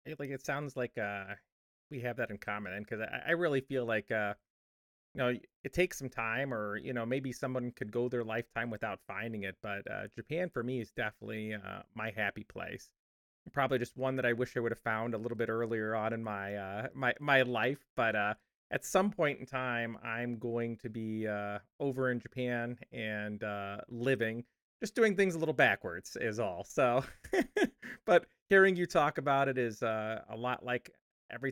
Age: 30-49